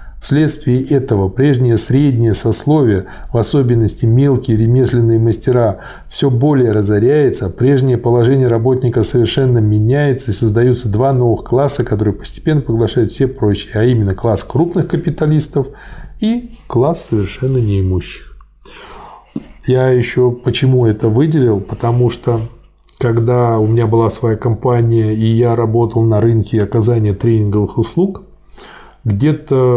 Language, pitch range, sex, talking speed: Russian, 110-135 Hz, male, 120 wpm